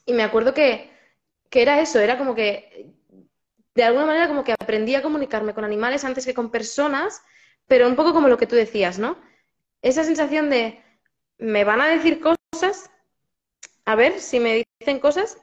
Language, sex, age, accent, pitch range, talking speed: Spanish, female, 20-39, Spanish, 215-275 Hz, 185 wpm